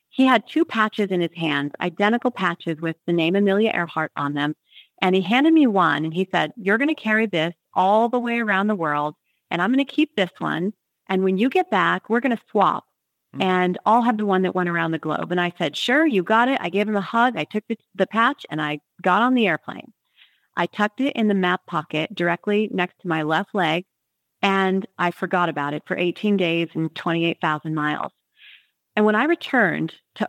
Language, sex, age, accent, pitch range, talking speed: English, female, 40-59, American, 170-215 Hz, 225 wpm